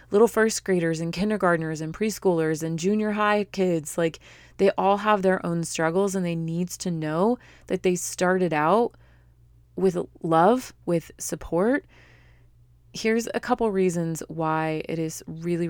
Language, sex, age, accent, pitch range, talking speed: English, female, 30-49, American, 155-185 Hz, 150 wpm